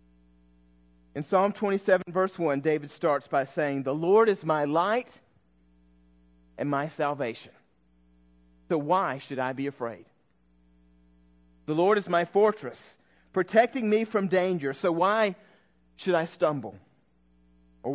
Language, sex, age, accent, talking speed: English, male, 40-59, American, 125 wpm